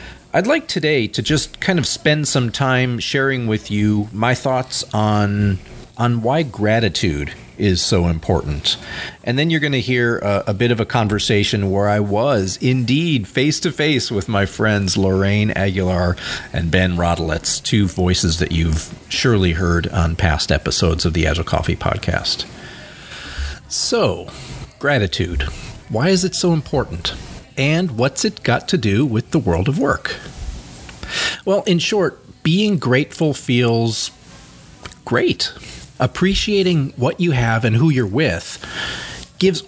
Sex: male